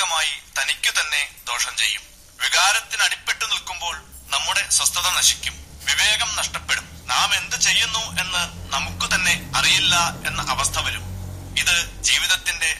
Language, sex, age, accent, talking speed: Malayalam, male, 30-49, native, 115 wpm